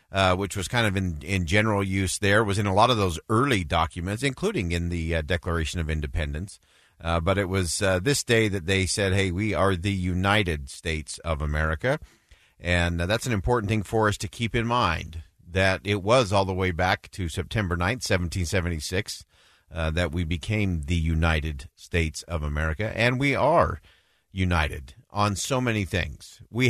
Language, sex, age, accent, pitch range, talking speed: English, male, 50-69, American, 85-110 Hz, 190 wpm